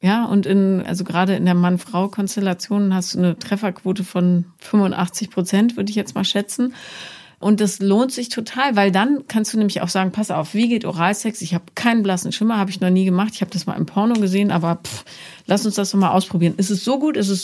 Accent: German